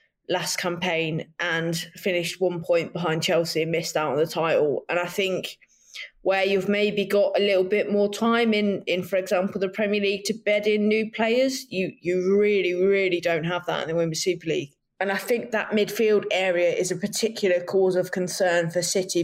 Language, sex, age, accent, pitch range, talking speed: English, female, 20-39, British, 175-205 Hz, 200 wpm